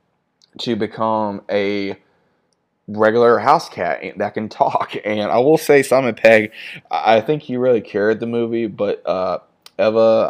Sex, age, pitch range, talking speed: male, 20-39, 100-115 Hz, 145 wpm